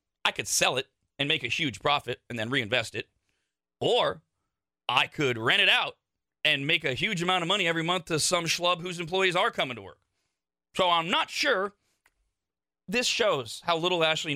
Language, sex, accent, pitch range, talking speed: English, male, American, 110-150 Hz, 190 wpm